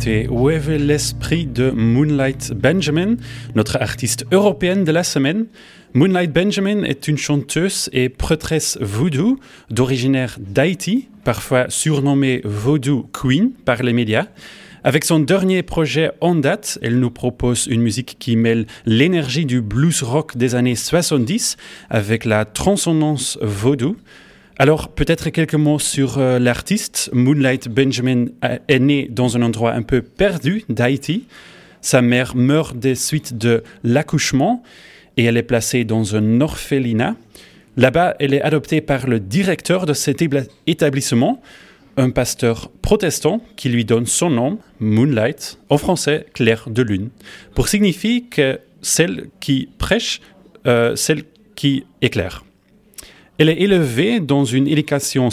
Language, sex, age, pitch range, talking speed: French, male, 30-49, 120-160 Hz, 135 wpm